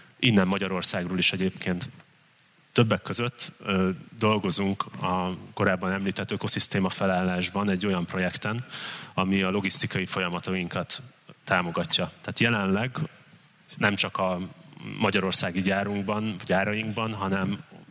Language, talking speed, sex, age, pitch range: English, 95 wpm, male, 30-49, 95-115 Hz